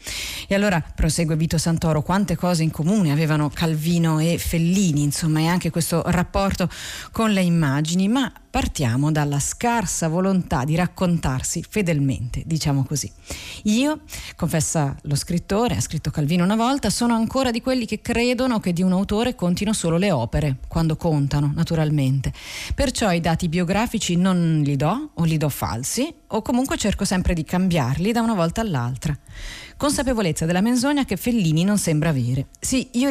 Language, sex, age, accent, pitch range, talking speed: Italian, female, 40-59, native, 155-210 Hz, 160 wpm